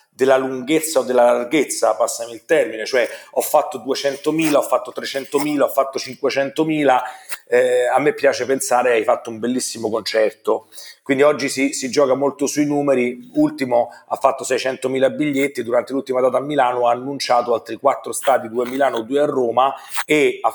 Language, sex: Italian, male